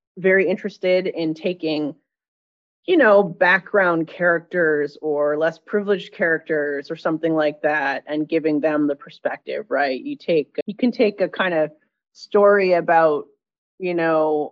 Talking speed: 140 wpm